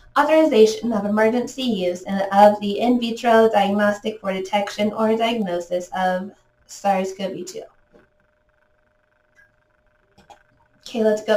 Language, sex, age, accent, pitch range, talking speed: English, female, 20-39, American, 200-245 Hz, 100 wpm